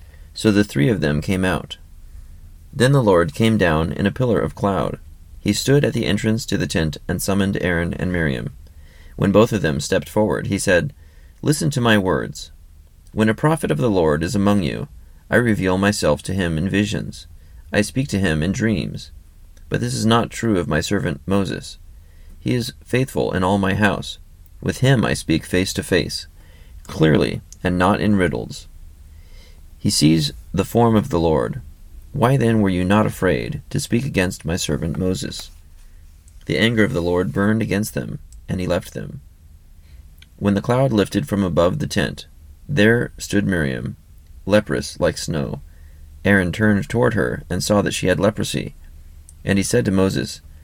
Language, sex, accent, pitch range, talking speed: English, male, American, 75-105 Hz, 180 wpm